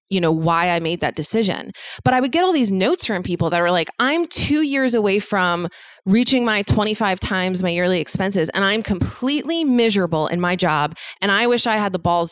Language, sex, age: English, female, 20-39